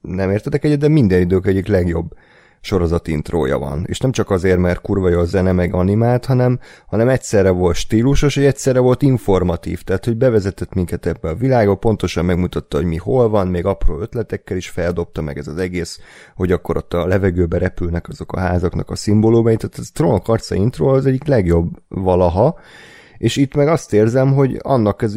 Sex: male